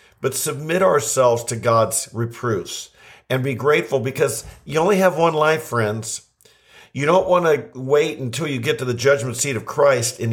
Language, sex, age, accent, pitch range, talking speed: English, male, 50-69, American, 120-140 Hz, 175 wpm